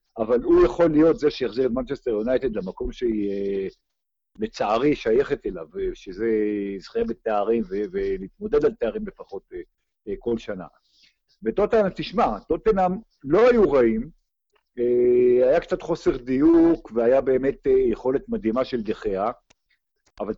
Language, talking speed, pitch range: Hebrew, 120 wpm, 115-175 Hz